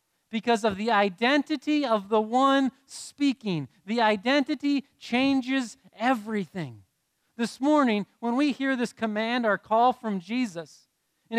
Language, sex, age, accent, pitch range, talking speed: English, male, 40-59, American, 195-250 Hz, 125 wpm